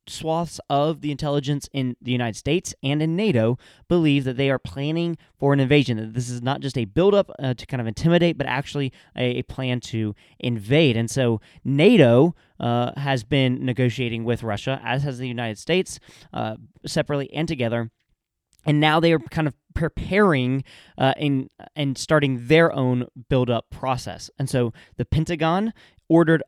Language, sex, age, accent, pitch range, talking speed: English, male, 20-39, American, 125-155 Hz, 170 wpm